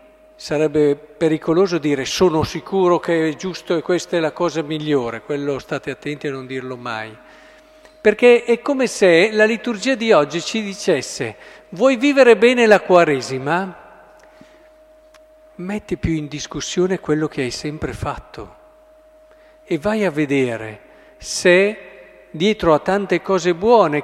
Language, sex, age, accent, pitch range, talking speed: Italian, male, 50-69, native, 150-220 Hz, 135 wpm